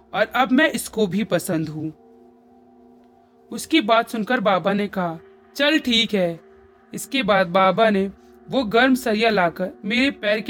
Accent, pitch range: native, 180-255 Hz